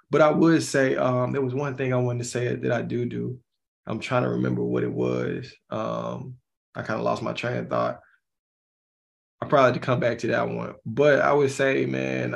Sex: male